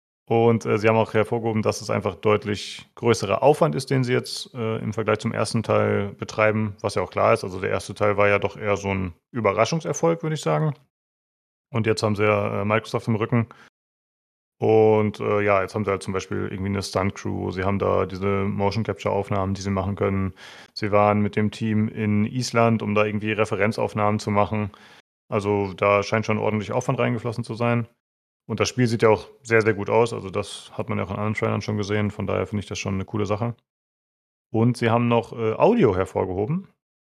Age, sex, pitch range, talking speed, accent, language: 30-49, male, 105-120 Hz, 215 wpm, German, German